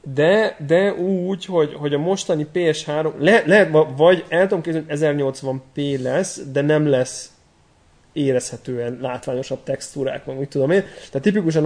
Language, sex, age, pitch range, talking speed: Hungarian, male, 30-49, 130-160 Hz, 140 wpm